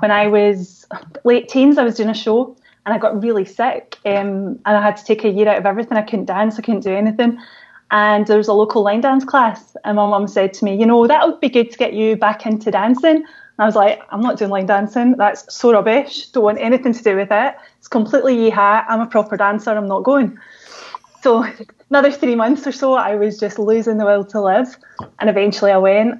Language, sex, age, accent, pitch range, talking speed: English, female, 20-39, British, 205-240 Hz, 245 wpm